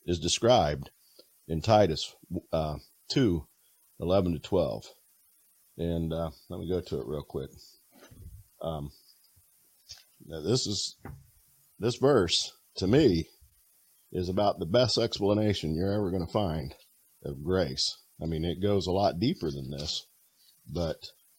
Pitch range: 80-105 Hz